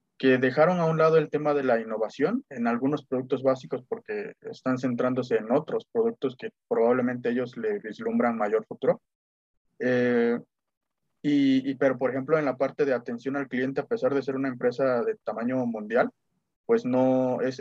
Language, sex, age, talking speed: Spanish, male, 20-39, 175 wpm